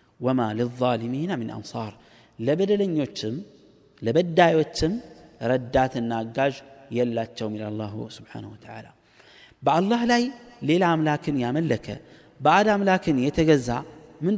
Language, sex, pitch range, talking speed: Amharic, male, 125-175 Hz, 95 wpm